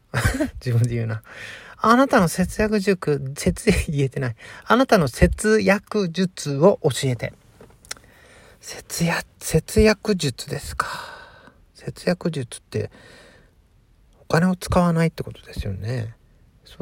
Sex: male